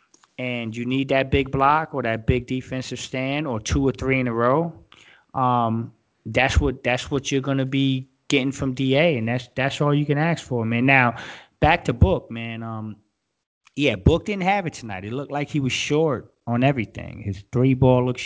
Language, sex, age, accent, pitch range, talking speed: English, male, 20-39, American, 115-135 Hz, 200 wpm